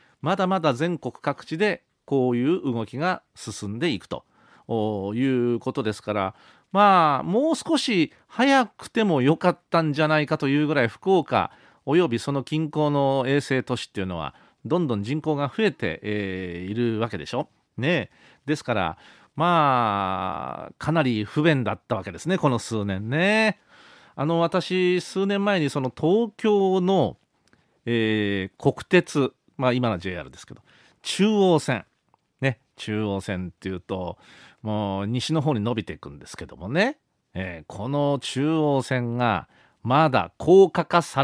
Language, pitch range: Japanese, 115-180 Hz